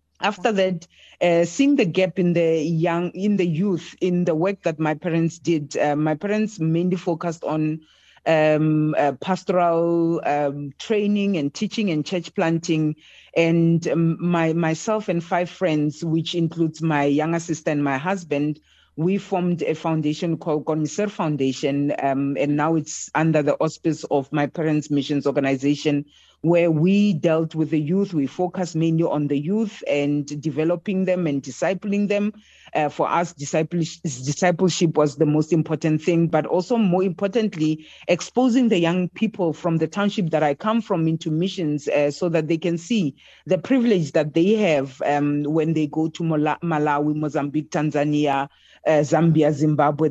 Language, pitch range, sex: English, 150-180 Hz, female